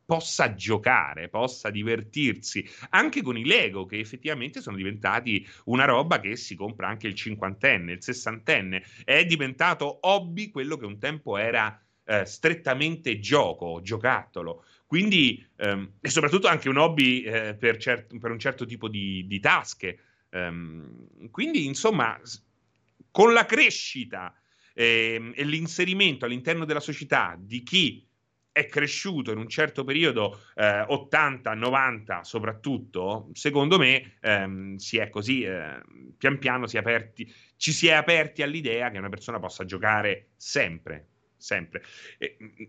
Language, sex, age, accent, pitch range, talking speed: Italian, male, 30-49, native, 100-140 Hz, 140 wpm